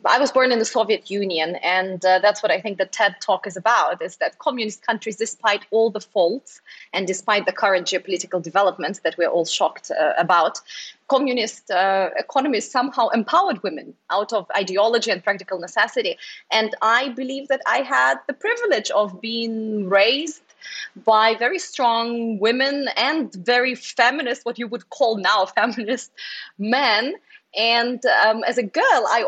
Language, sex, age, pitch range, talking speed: English, female, 20-39, 195-255 Hz, 165 wpm